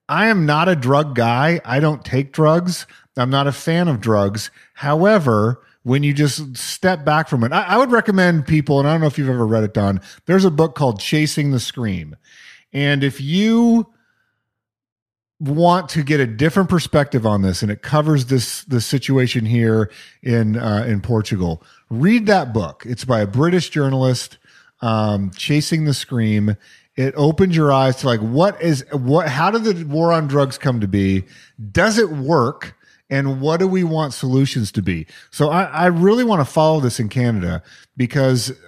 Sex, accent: male, American